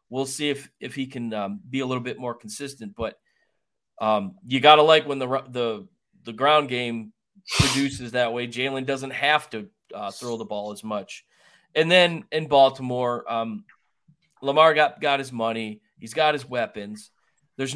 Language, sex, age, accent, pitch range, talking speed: English, male, 40-59, American, 115-160 Hz, 175 wpm